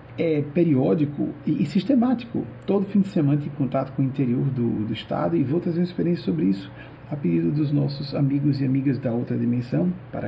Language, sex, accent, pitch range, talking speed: Portuguese, male, Brazilian, 125-160 Hz, 205 wpm